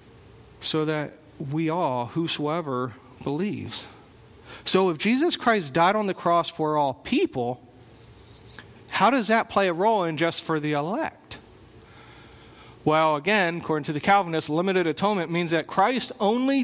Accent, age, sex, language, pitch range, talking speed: American, 40-59, male, English, 150-195 Hz, 145 wpm